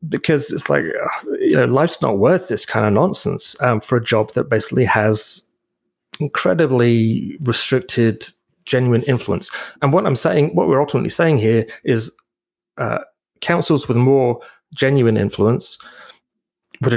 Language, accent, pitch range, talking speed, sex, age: English, British, 110-135 Hz, 140 wpm, male, 30-49